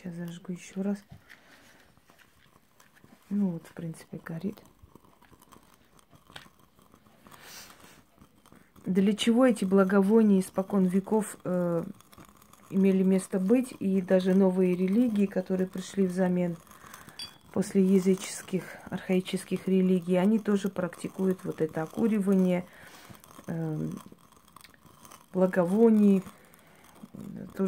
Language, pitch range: Russian, 185-205 Hz